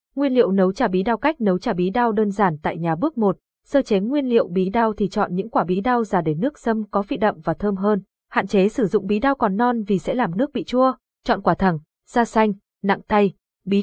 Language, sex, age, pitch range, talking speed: Vietnamese, female, 20-39, 185-240 Hz, 265 wpm